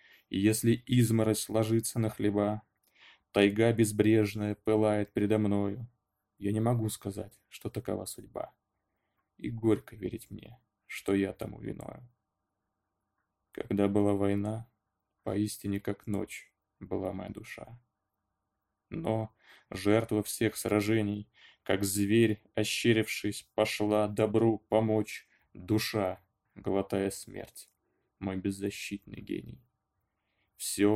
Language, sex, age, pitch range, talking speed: Russian, male, 20-39, 100-110 Hz, 100 wpm